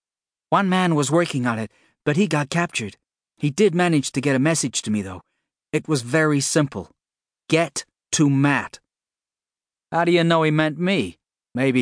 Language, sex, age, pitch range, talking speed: English, male, 40-59, 110-155 Hz, 180 wpm